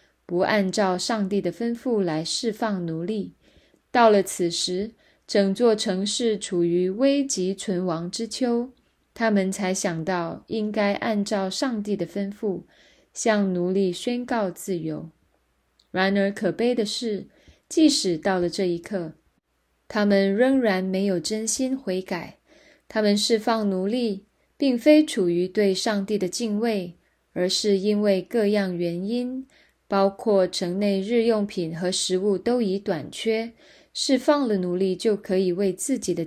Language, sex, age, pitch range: Chinese, female, 20-39, 180-225 Hz